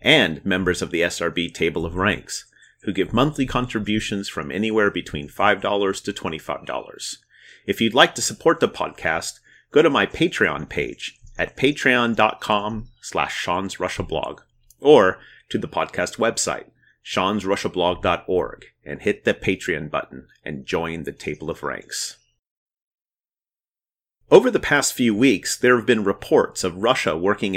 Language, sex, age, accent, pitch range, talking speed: English, male, 30-49, American, 95-125 Hz, 135 wpm